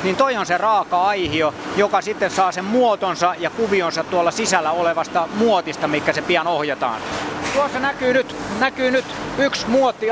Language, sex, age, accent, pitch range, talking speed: Finnish, male, 30-49, native, 180-235 Hz, 160 wpm